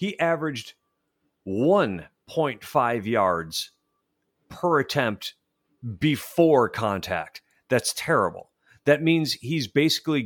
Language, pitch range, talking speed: English, 115-165 Hz, 80 wpm